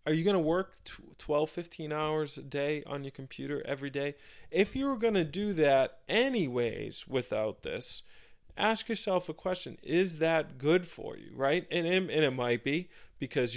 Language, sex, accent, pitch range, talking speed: English, male, American, 125-150 Hz, 180 wpm